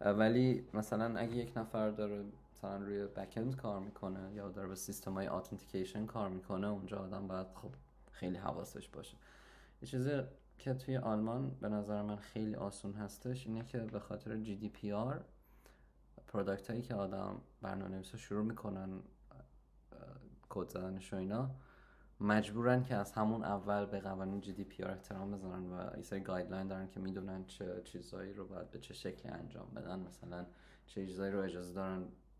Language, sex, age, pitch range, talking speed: Persian, male, 20-39, 95-110 Hz, 155 wpm